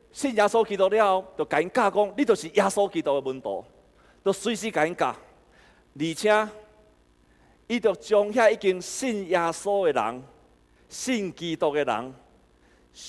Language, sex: Chinese, male